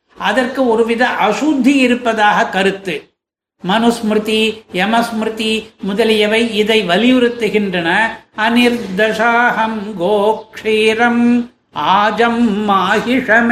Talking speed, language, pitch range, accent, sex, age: 45 wpm, Tamil, 210-245 Hz, native, male, 60-79